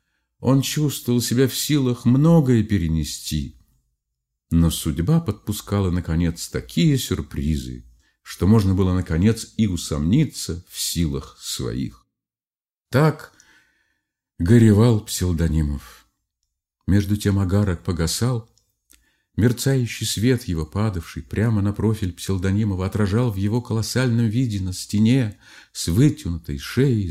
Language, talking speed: Russian, 105 wpm